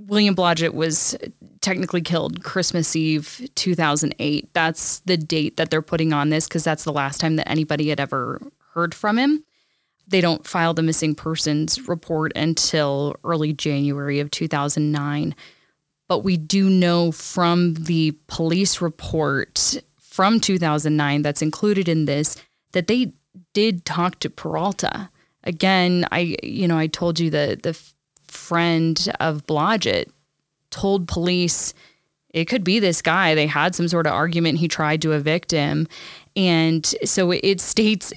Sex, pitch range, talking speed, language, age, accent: female, 155-180 Hz, 150 wpm, English, 10-29, American